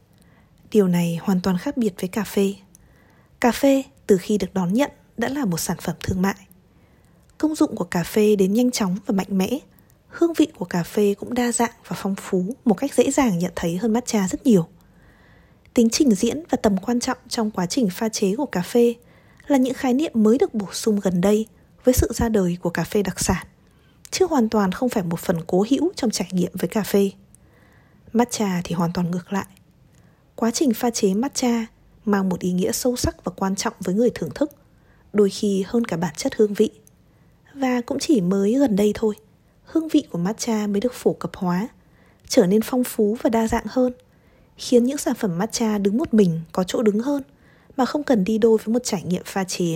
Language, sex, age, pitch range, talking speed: Vietnamese, female, 20-39, 190-245 Hz, 220 wpm